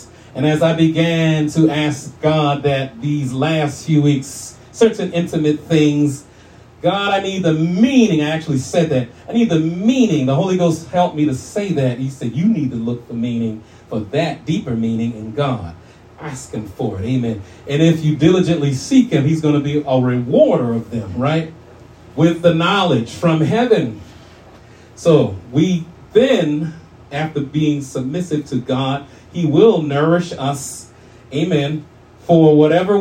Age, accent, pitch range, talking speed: 40-59, American, 120-160 Hz, 165 wpm